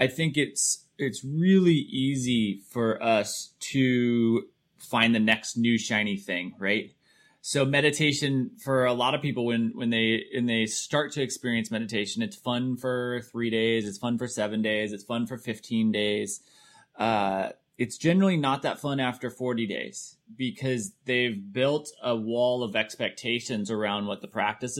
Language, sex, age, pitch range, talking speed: English, male, 20-39, 115-150 Hz, 160 wpm